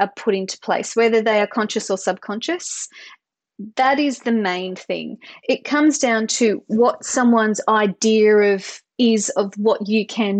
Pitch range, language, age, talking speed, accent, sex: 205-250 Hz, English, 30-49, 160 wpm, Australian, female